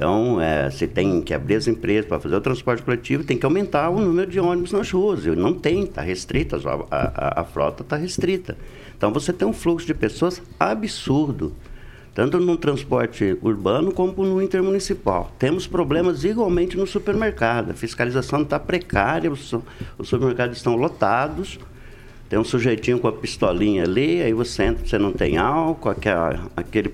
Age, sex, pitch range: 60-79, male, 120-185 Hz